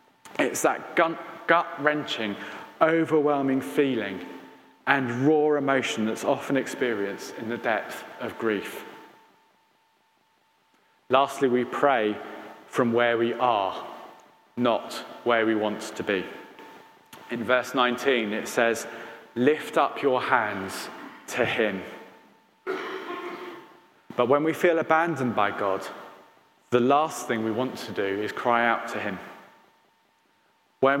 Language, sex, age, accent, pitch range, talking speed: English, male, 30-49, British, 120-155 Hz, 115 wpm